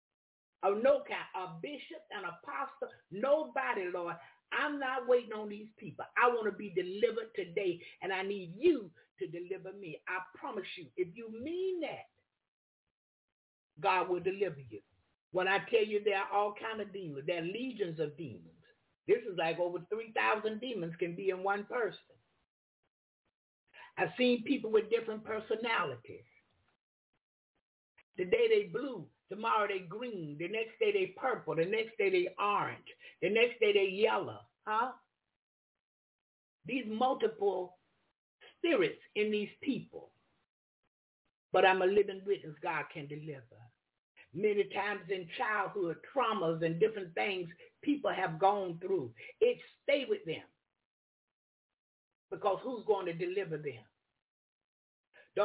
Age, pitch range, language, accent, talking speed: 50-69, 185-295 Hz, English, American, 140 wpm